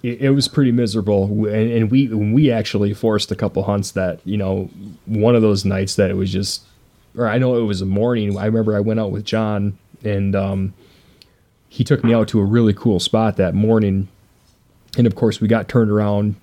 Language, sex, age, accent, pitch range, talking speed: English, male, 20-39, American, 100-115 Hz, 210 wpm